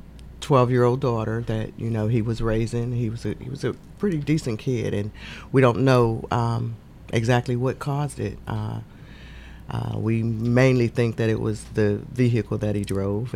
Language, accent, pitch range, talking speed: English, American, 105-120 Hz, 185 wpm